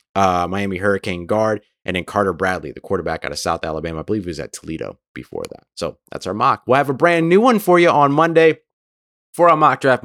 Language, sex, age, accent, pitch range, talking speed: English, male, 30-49, American, 95-140 Hz, 240 wpm